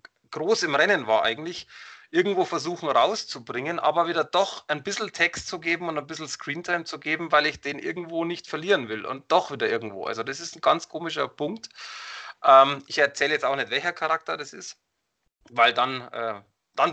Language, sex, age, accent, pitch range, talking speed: German, male, 30-49, German, 135-170 Hz, 185 wpm